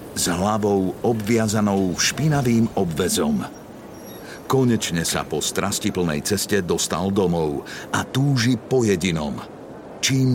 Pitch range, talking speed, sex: 90-120 Hz, 100 wpm, male